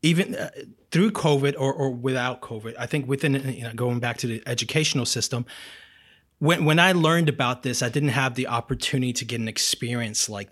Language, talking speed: English, 195 wpm